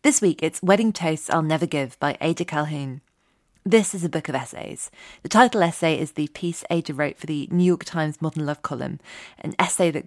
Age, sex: 20-39, female